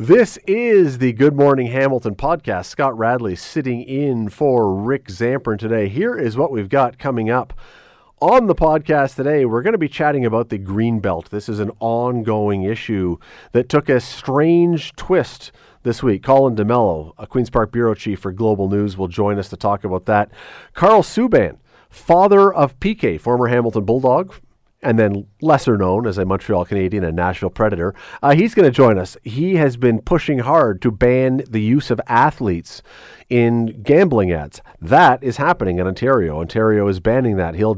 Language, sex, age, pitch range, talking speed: English, male, 40-59, 105-145 Hz, 180 wpm